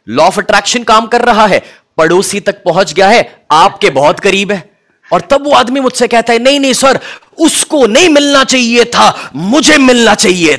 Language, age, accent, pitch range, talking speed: Hindi, 30-49, native, 155-235 Hz, 185 wpm